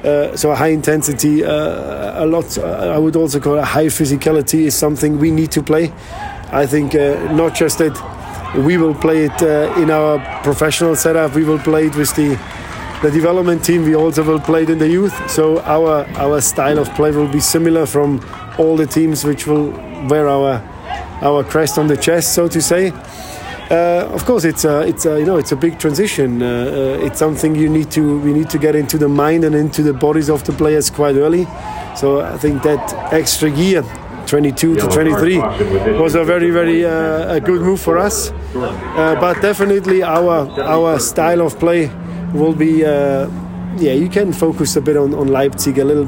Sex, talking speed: male, 200 wpm